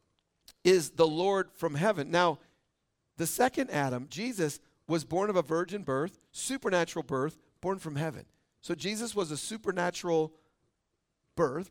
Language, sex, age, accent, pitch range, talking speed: English, male, 50-69, American, 150-195 Hz, 140 wpm